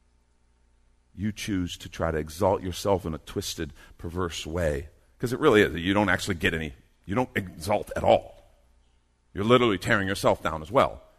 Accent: American